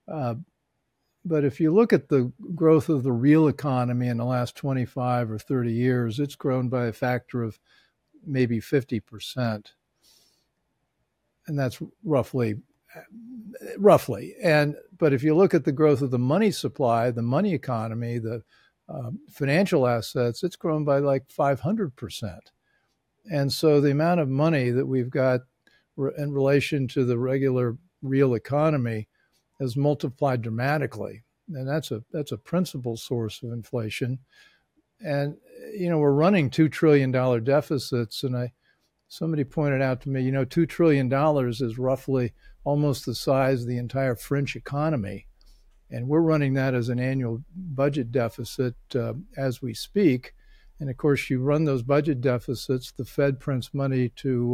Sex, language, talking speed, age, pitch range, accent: male, English, 155 wpm, 50-69, 125-150 Hz, American